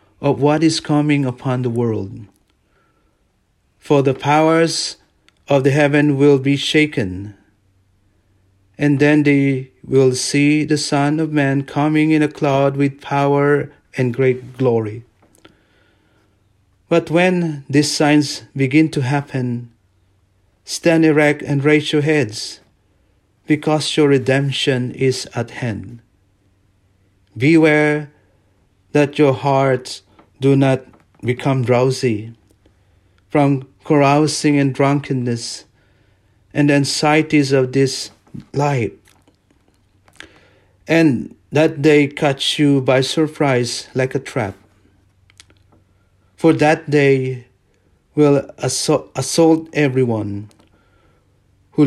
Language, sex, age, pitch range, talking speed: English, male, 40-59, 100-145 Hz, 100 wpm